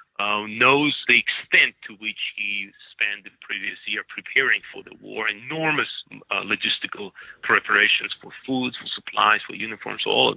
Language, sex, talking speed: English, male, 155 wpm